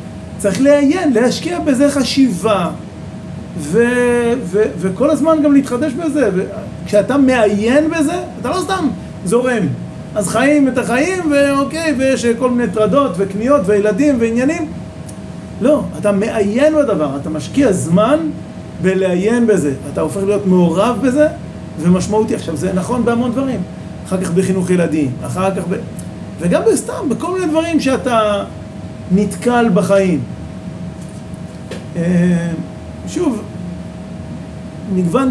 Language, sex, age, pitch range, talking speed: Hebrew, male, 40-59, 185-250 Hz, 120 wpm